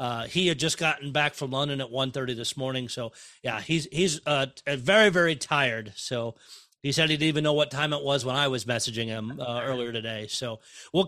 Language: English